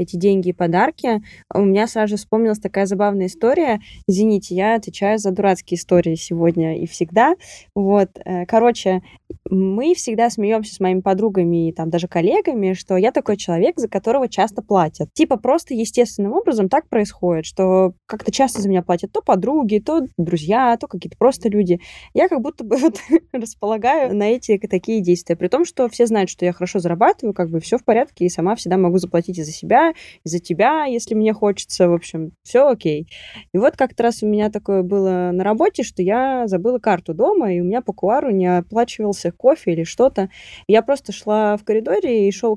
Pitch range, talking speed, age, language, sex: 180-230 Hz, 185 wpm, 20-39, Russian, female